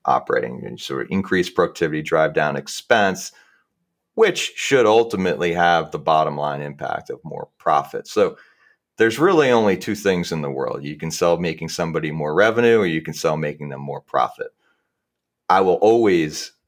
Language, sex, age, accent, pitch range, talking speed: English, male, 30-49, American, 75-90 Hz, 170 wpm